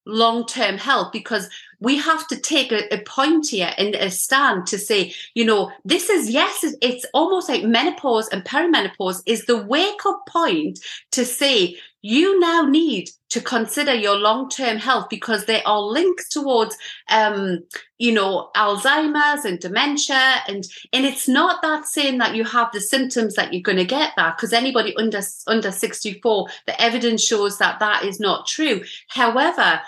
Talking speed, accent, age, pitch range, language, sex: 170 wpm, British, 40-59, 210-275 Hz, English, female